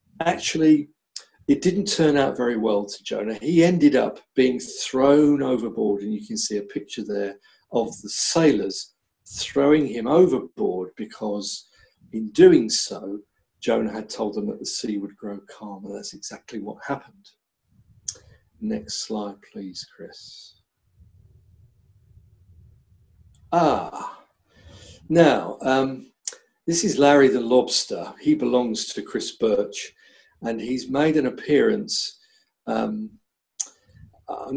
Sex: male